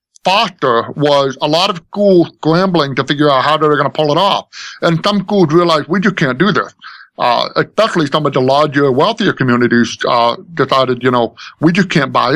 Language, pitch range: English, 120-155 Hz